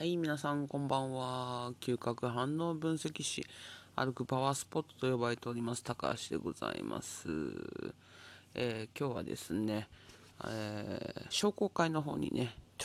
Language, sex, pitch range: Japanese, male, 100-130 Hz